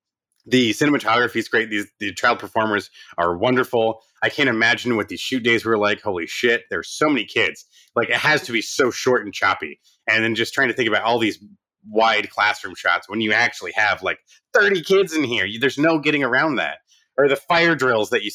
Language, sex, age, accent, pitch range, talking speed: English, male, 30-49, American, 110-140 Hz, 220 wpm